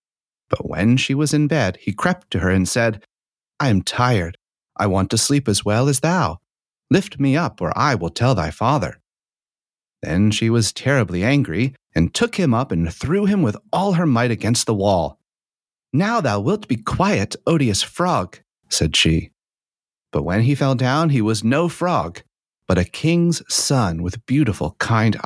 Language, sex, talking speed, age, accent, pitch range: English, male, 180 wpm, 30-49, American, 95-135 Hz